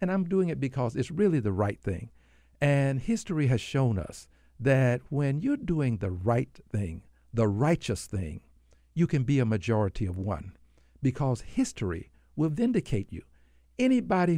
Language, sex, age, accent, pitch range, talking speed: English, male, 60-79, American, 100-155 Hz, 160 wpm